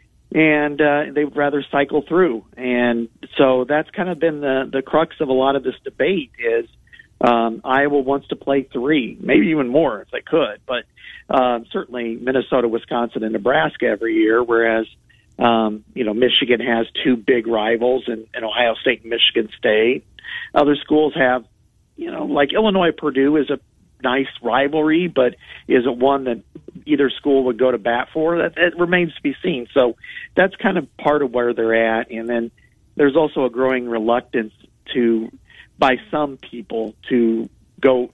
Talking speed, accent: 175 wpm, American